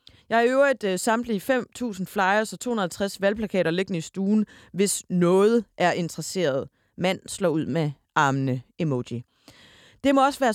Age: 30-49